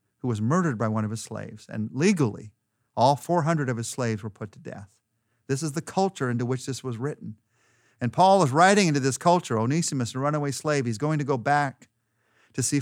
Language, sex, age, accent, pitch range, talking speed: English, male, 50-69, American, 115-150 Hz, 215 wpm